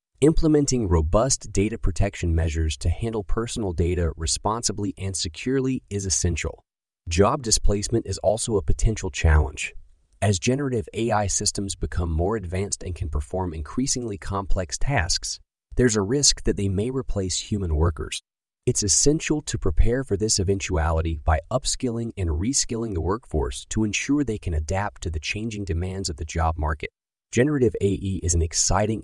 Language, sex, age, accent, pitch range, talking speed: English, male, 30-49, American, 85-115 Hz, 155 wpm